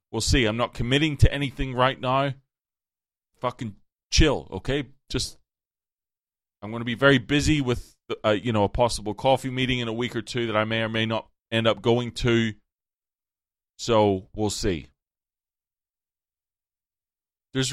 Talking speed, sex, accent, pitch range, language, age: 150 wpm, male, American, 90-135 Hz, English, 30-49